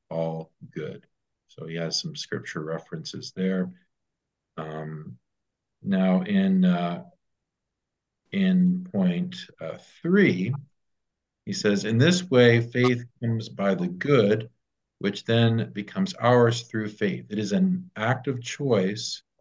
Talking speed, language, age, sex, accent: 120 wpm, English, 50-69, male, American